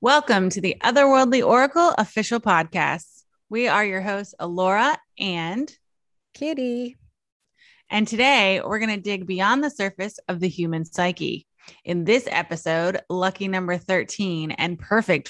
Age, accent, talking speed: 20-39, American, 135 wpm